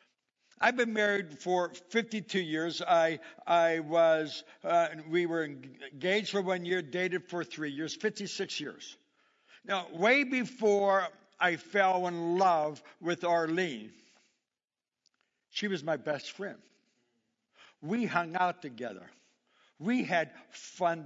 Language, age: English, 60-79